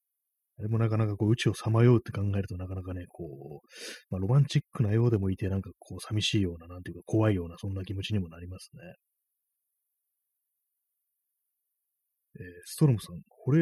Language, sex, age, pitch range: Japanese, male, 30-49, 95-135 Hz